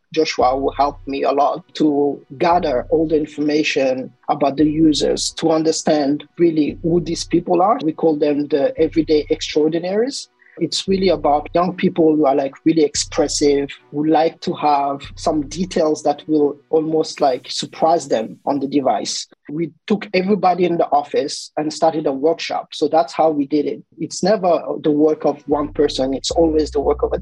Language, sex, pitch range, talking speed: English, male, 150-170 Hz, 180 wpm